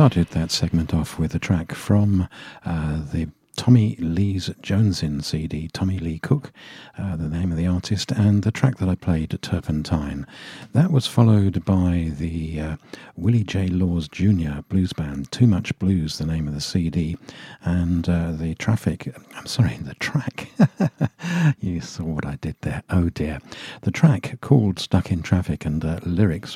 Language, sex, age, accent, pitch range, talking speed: English, male, 50-69, British, 80-95 Hz, 170 wpm